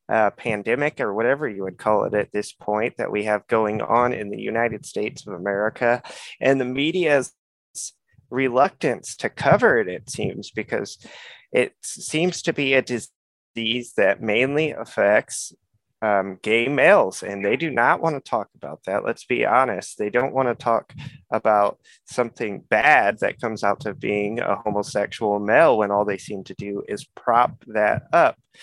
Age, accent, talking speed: 20-39, American, 170 wpm